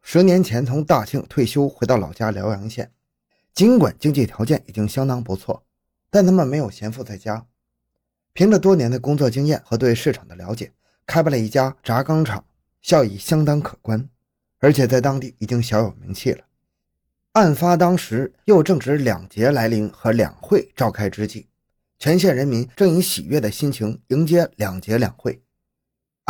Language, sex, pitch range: Chinese, male, 105-145 Hz